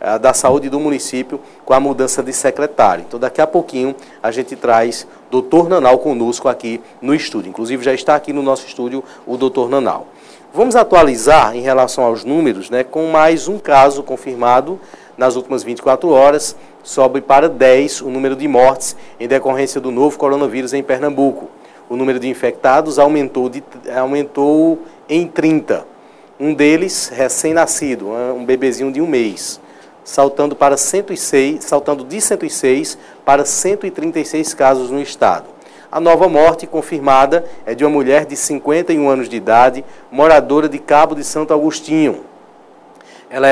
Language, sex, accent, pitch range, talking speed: Portuguese, male, Brazilian, 130-155 Hz, 150 wpm